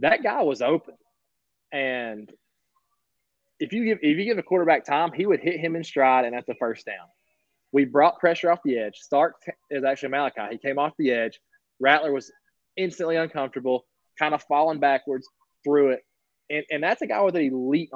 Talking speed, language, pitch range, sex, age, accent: 195 wpm, English, 125-160 Hz, male, 20-39, American